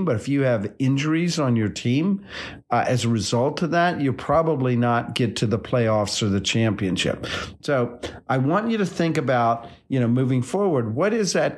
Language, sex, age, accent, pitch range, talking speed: English, male, 50-69, American, 115-145 Hz, 195 wpm